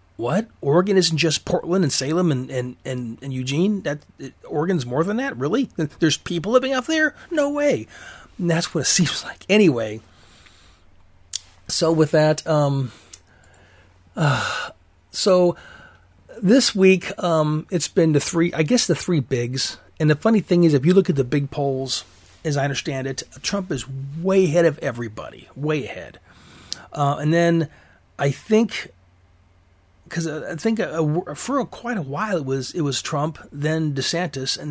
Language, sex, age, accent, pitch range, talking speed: English, male, 40-59, American, 130-180 Hz, 165 wpm